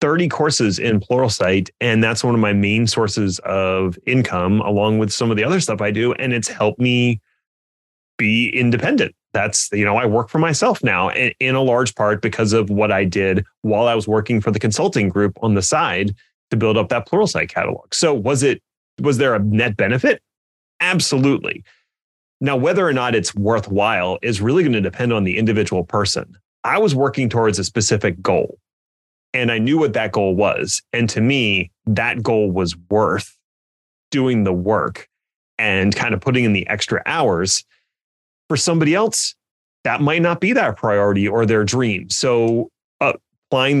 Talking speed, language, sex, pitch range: 180 wpm, English, male, 105-130 Hz